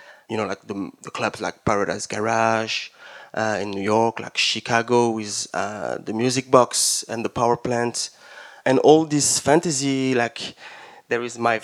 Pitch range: 120-155 Hz